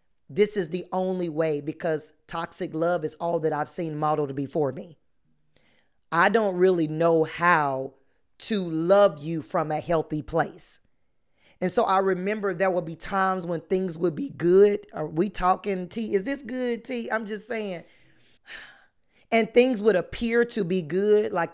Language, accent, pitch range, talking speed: English, American, 160-200 Hz, 165 wpm